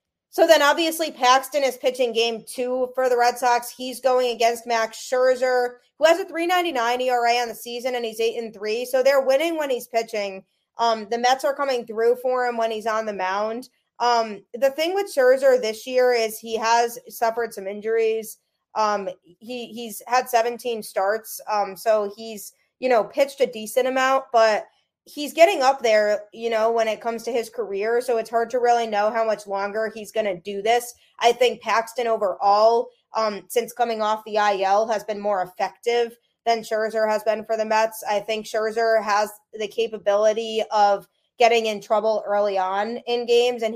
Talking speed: 190 wpm